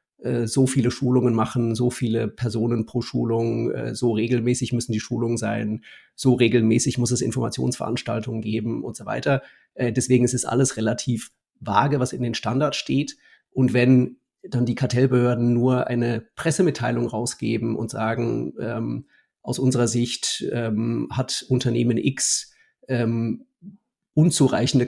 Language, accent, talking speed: German, German, 135 wpm